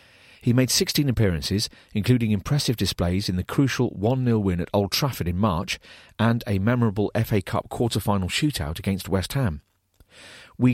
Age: 40-59